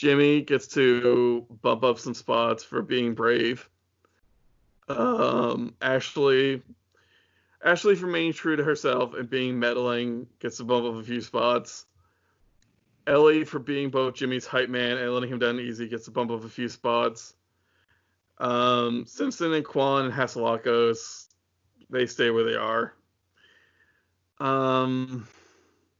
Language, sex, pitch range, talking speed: English, male, 115-130 Hz, 135 wpm